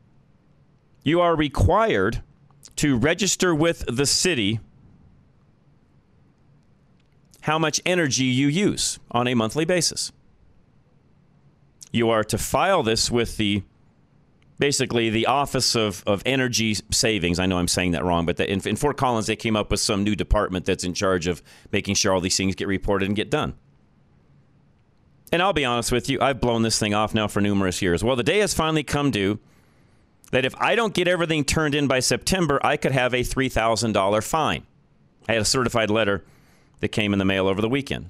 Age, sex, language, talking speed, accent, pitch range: 40-59, male, English, 180 wpm, American, 105-150 Hz